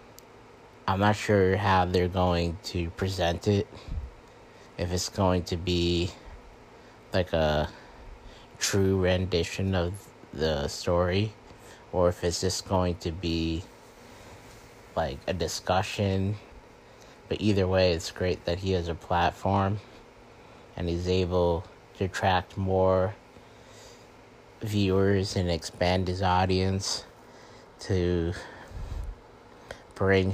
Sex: male